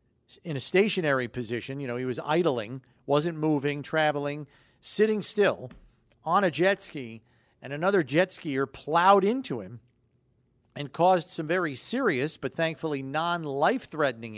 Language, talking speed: English, 140 wpm